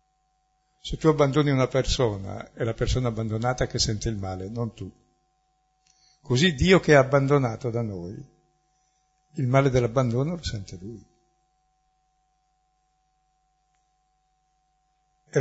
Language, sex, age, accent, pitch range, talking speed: Italian, male, 60-79, native, 120-150 Hz, 115 wpm